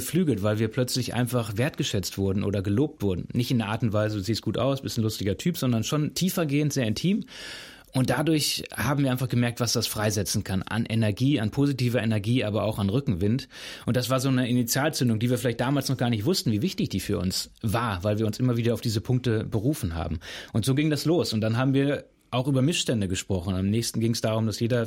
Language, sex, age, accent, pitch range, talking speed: German, male, 30-49, German, 110-135 Hz, 235 wpm